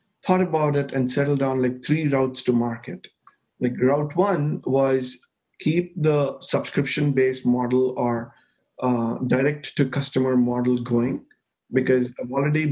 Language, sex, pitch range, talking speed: English, male, 125-140 Hz, 140 wpm